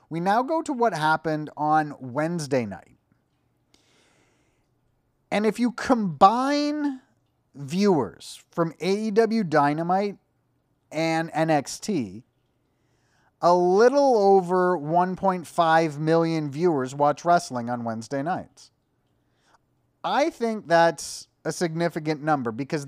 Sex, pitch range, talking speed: male, 145-190 Hz, 95 wpm